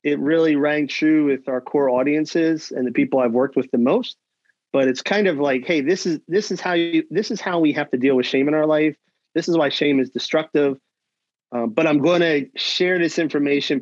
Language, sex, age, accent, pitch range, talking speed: English, male, 30-49, American, 130-180 Hz, 235 wpm